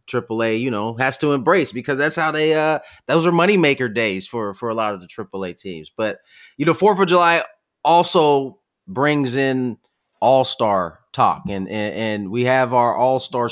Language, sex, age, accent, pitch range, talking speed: English, male, 30-49, American, 115-150 Hz, 190 wpm